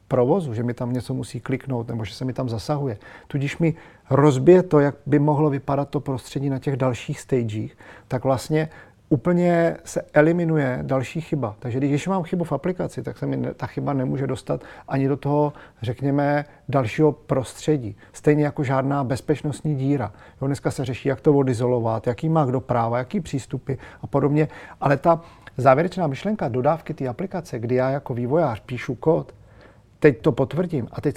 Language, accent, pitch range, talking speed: English, Czech, 125-150 Hz, 175 wpm